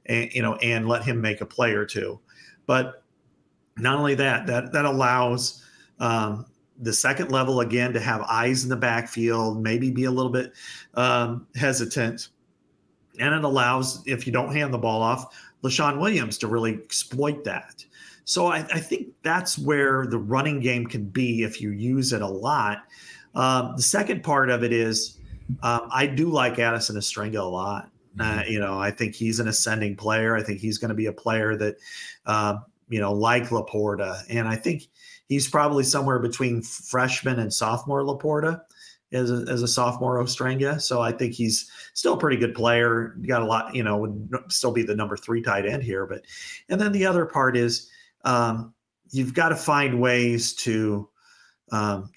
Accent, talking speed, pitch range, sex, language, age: American, 185 wpm, 110-130 Hz, male, English, 40-59